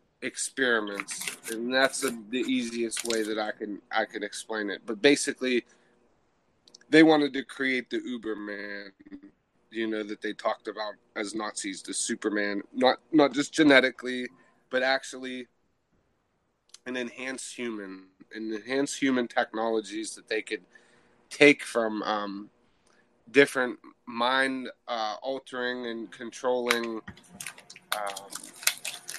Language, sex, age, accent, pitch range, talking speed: English, male, 30-49, American, 115-135 Hz, 120 wpm